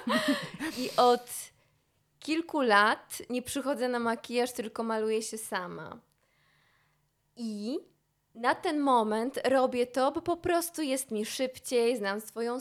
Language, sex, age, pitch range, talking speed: Polish, female, 20-39, 220-245 Hz, 125 wpm